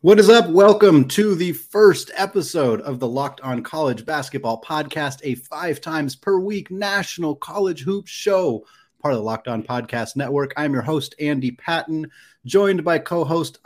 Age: 30-49